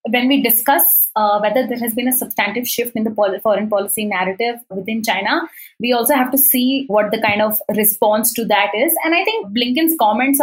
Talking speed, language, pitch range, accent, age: 205 wpm, English, 210-285 Hz, Indian, 20-39